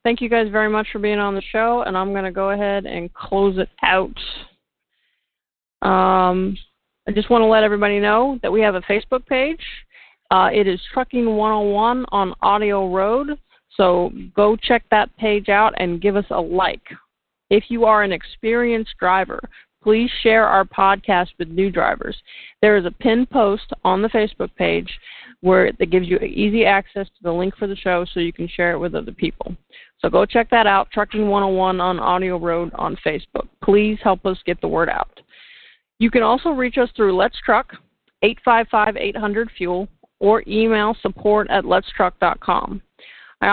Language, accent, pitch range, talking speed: English, American, 190-225 Hz, 175 wpm